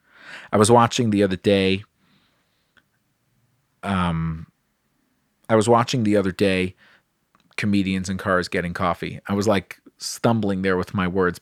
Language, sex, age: English, male, 40-59